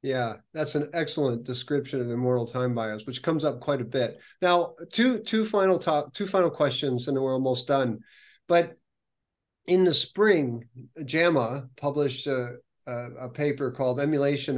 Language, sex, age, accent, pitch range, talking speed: English, male, 40-59, American, 125-155 Hz, 165 wpm